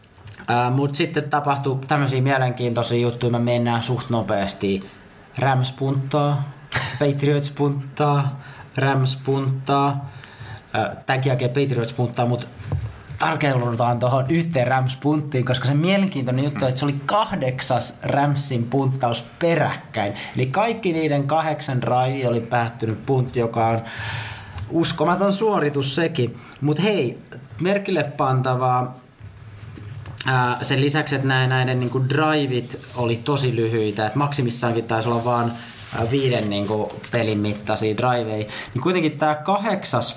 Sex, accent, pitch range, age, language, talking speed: male, native, 115-145 Hz, 30-49, Finnish, 115 wpm